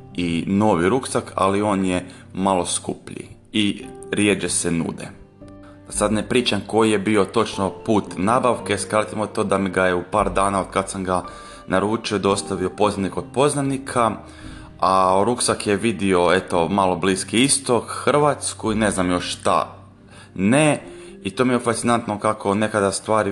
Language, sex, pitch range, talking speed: Croatian, male, 95-110 Hz, 160 wpm